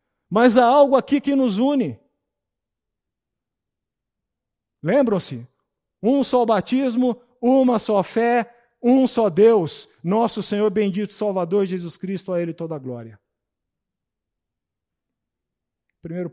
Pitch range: 145-200 Hz